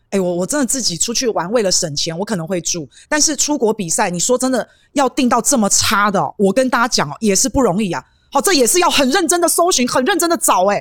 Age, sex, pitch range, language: 30-49, female, 190-265 Hz, Chinese